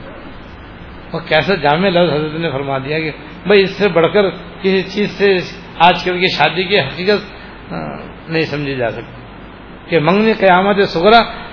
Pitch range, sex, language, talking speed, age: 160-205 Hz, male, Urdu, 155 wpm, 60-79